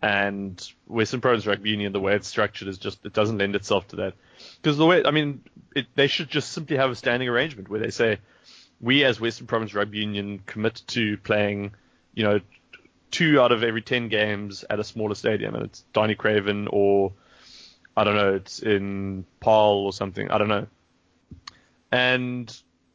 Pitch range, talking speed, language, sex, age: 100-115 Hz, 190 wpm, English, male, 20-39